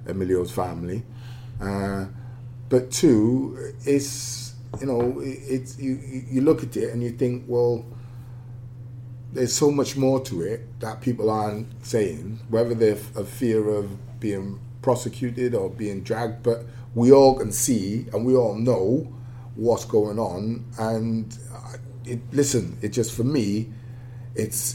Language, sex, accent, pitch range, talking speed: English, male, British, 110-125 Hz, 140 wpm